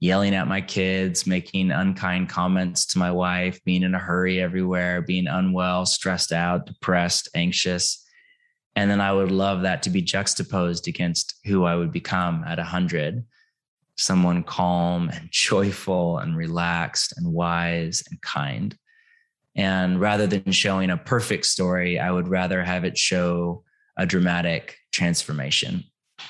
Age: 20-39